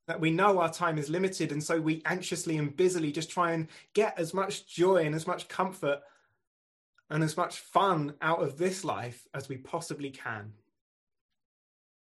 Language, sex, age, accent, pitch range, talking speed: English, male, 20-39, British, 130-175 Hz, 175 wpm